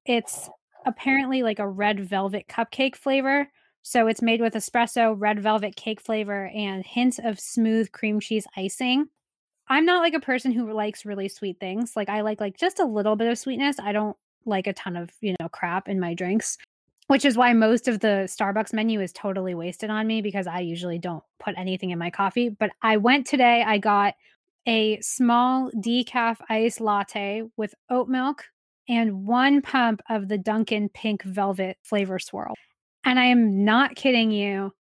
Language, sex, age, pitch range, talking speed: English, female, 20-39, 205-250 Hz, 185 wpm